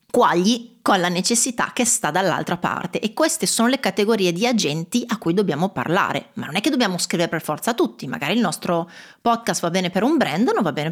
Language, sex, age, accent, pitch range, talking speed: Italian, female, 30-49, native, 175-235 Hz, 220 wpm